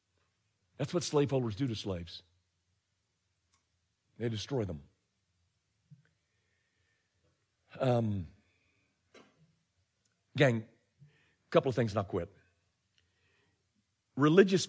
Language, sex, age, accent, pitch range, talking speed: English, male, 50-69, American, 95-135 Hz, 80 wpm